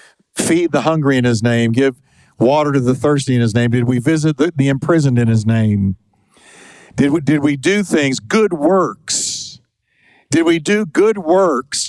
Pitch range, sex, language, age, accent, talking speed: 120-160 Hz, male, English, 50-69, American, 175 wpm